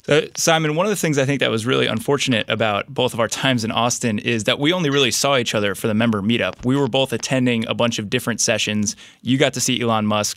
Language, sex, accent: English, male, American